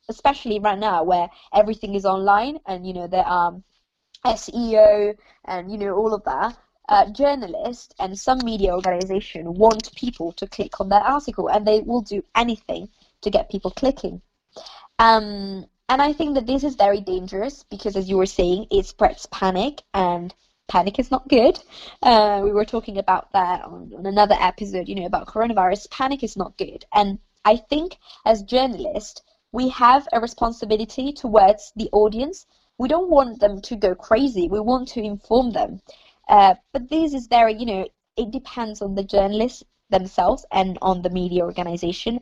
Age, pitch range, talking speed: 20-39, 185-240 Hz, 175 wpm